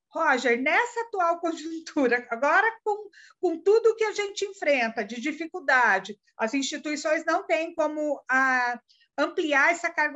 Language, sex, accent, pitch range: Portuguese, female, Brazilian, 260-355 Hz